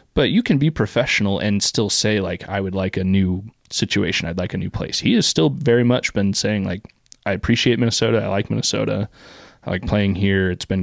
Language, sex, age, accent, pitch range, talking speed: English, male, 20-39, American, 95-115 Hz, 220 wpm